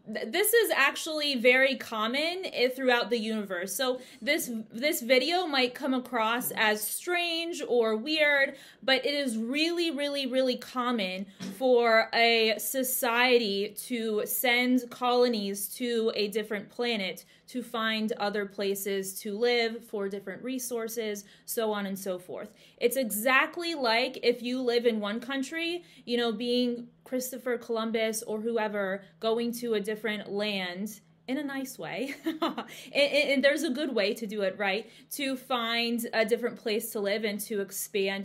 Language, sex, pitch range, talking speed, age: English, female, 210-270 Hz, 150 wpm, 20-39